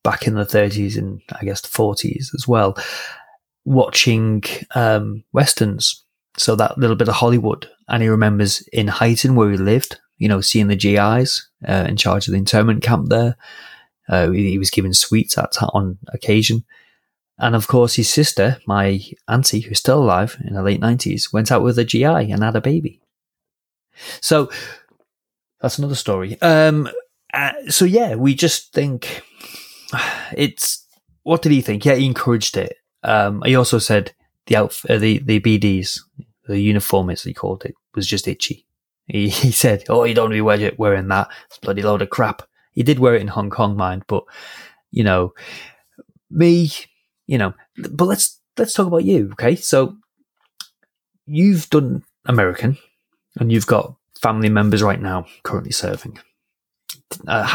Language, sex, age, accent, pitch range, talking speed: English, male, 30-49, British, 105-130 Hz, 170 wpm